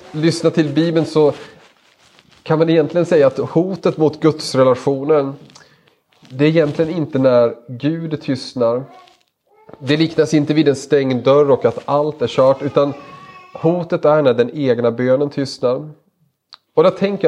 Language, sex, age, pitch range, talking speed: Swedish, male, 30-49, 130-155 Hz, 150 wpm